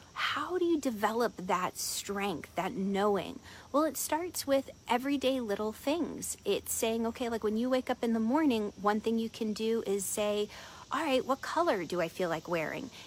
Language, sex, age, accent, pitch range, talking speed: English, female, 30-49, American, 195-245 Hz, 195 wpm